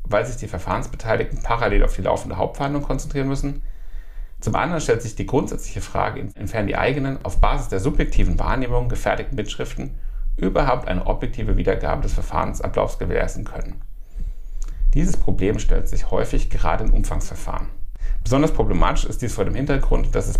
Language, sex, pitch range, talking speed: German, male, 95-130 Hz, 155 wpm